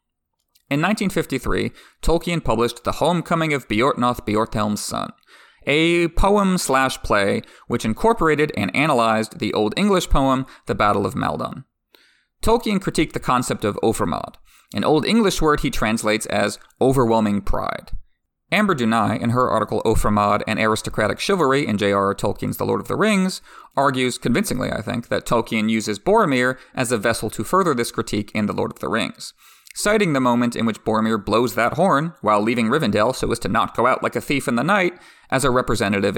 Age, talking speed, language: 30-49, 175 wpm, English